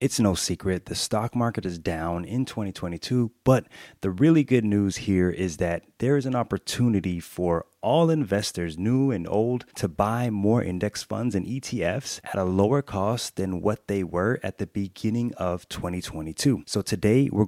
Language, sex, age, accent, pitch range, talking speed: English, male, 30-49, American, 95-125 Hz, 175 wpm